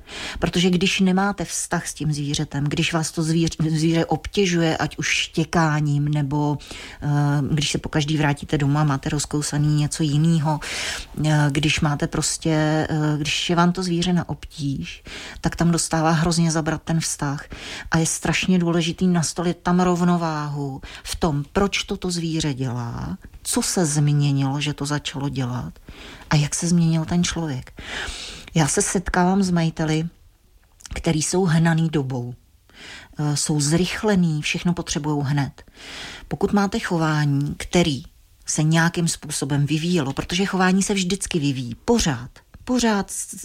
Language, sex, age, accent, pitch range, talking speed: Czech, female, 40-59, native, 150-175 Hz, 140 wpm